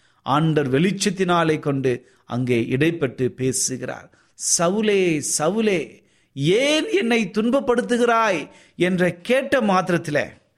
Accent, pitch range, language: native, 130-205 Hz, Tamil